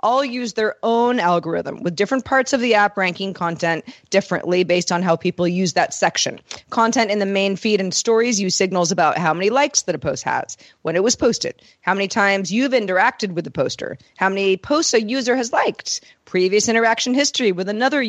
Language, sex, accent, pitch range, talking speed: English, female, American, 180-230 Hz, 205 wpm